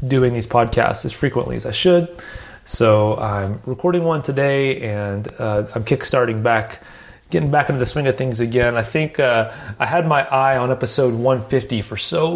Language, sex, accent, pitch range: English, male, American, 120-155 Hz